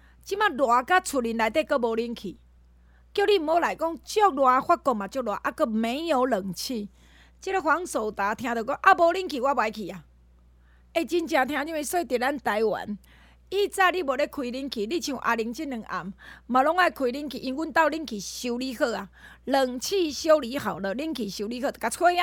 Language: Chinese